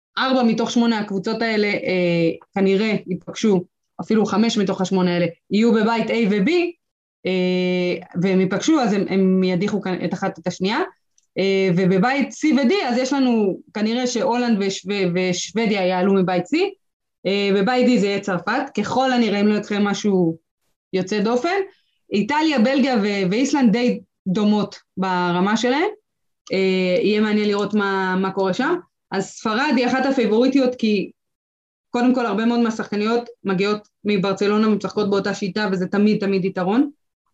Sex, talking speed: female, 150 wpm